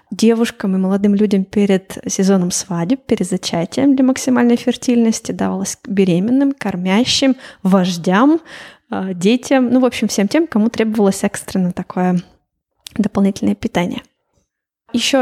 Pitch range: 200-255 Hz